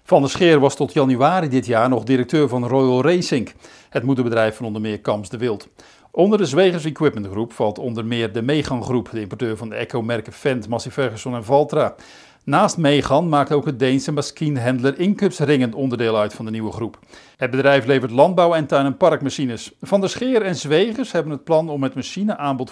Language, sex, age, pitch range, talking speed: Dutch, male, 50-69, 120-160 Hz, 200 wpm